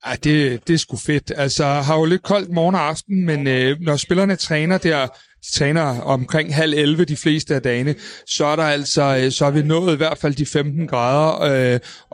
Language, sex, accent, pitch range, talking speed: Danish, male, native, 135-160 Hz, 215 wpm